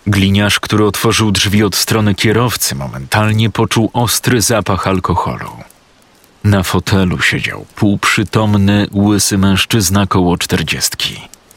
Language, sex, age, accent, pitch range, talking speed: Polish, male, 40-59, native, 95-105 Hz, 105 wpm